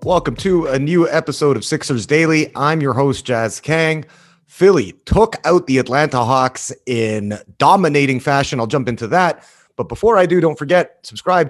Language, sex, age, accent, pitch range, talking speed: English, male, 30-49, American, 130-170 Hz, 170 wpm